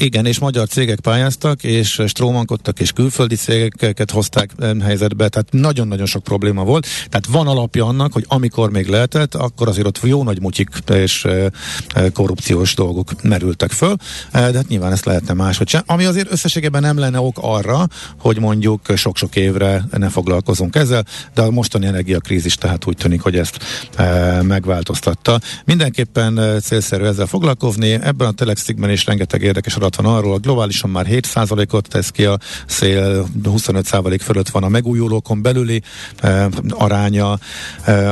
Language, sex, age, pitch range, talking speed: Hungarian, male, 50-69, 95-120 Hz, 140 wpm